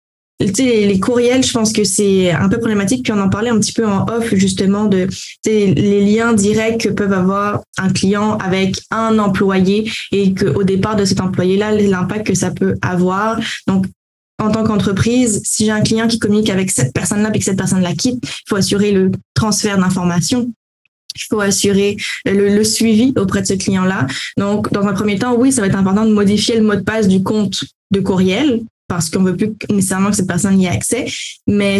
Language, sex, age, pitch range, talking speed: French, female, 20-39, 190-215 Hz, 215 wpm